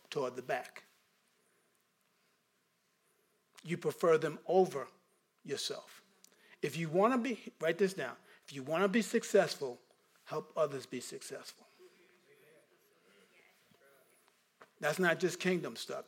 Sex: male